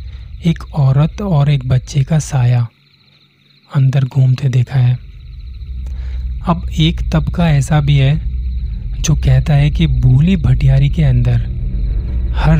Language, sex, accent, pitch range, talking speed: Hindi, male, native, 110-145 Hz, 125 wpm